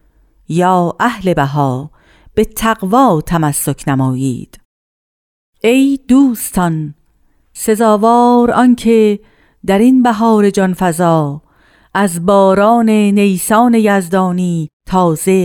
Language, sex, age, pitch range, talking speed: Persian, female, 50-69, 165-210 Hz, 80 wpm